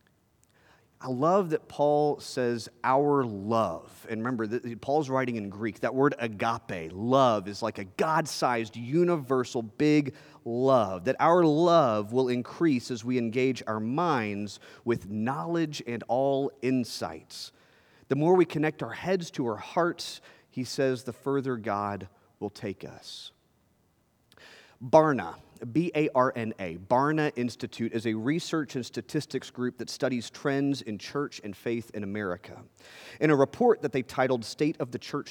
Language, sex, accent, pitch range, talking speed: English, male, American, 115-145 Hz, 145 wpm